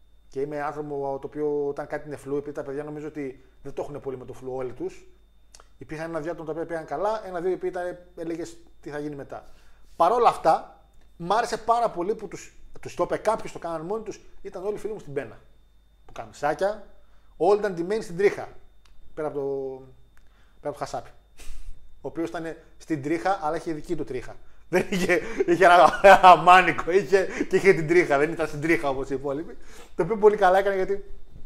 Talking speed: 205 wpm